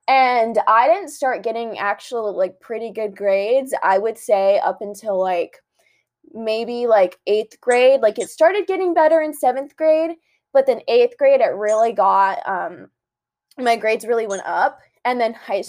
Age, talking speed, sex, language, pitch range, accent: 20-39, 170 wpm, female, English, 210-275 Hz, American